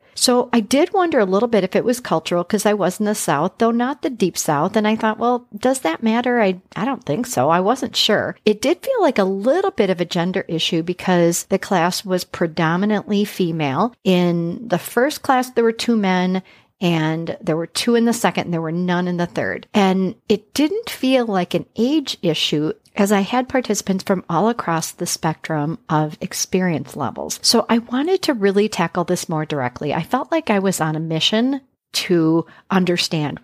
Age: 50-69